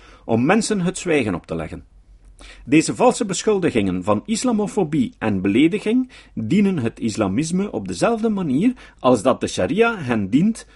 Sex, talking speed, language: male, 145 wpm, Dutch